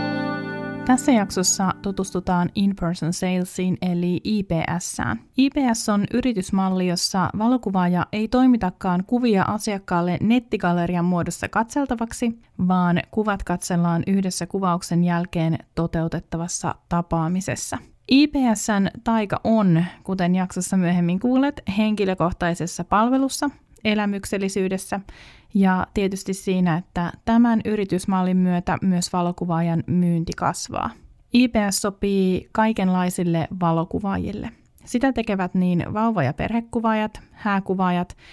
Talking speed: 90 wpm